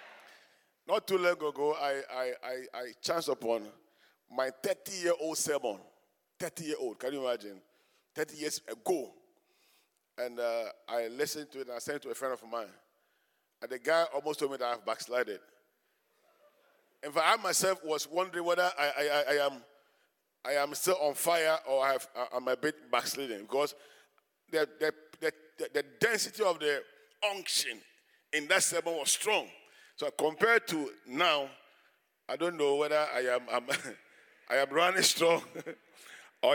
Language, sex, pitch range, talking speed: English, male, 135-175 Hz, 160 wpm